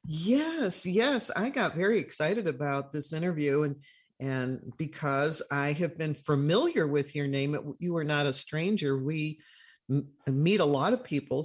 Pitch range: 135-175 Hz